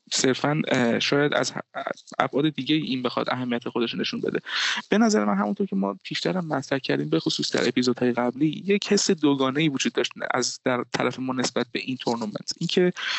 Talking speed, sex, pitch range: 175 wpm, male, 130-170 Hz